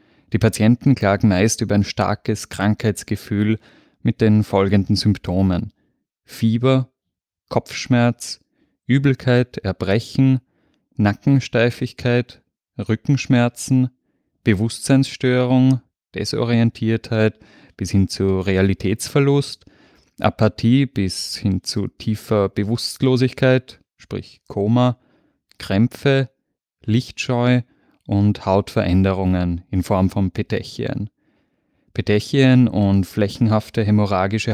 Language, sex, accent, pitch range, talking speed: German, male, German, 100-125 Hz, 75 wpm